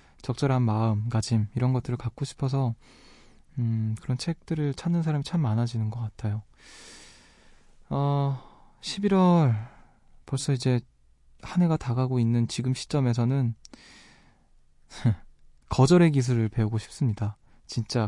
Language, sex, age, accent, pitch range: Korean, male, 20-39, native, 115-140 Hz